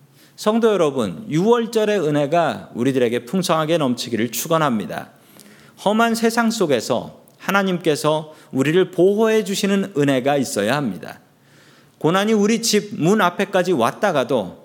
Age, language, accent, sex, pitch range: 40-59, Korean, native, male, 130-200 Hz